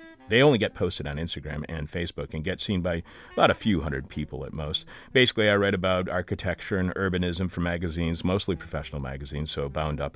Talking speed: 200 wpm